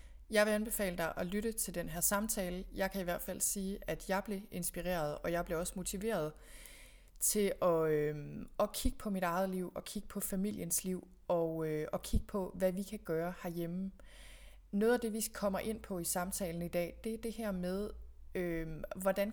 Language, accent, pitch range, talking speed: Danish, native, 170-200 Hz, 195 wpm